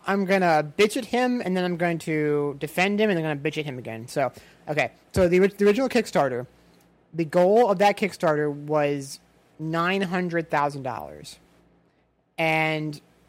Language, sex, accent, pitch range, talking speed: English, male, American, 155-205 Hz, 165 wpm